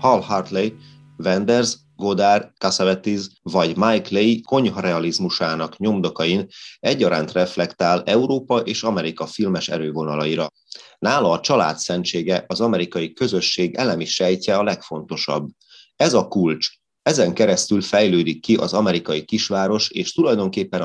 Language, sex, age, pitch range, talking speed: Hungarian, male, 30-49, 85-115 Hz, 110 wpm